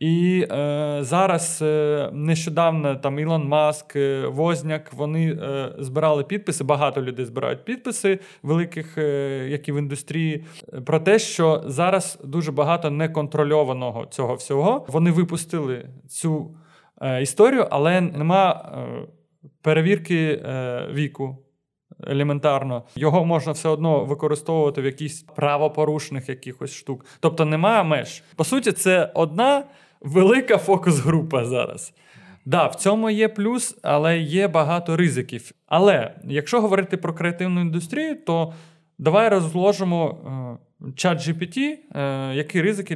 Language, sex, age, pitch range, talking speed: Ukrainian, male, 20-39, 145-175 Hz, 125 wpm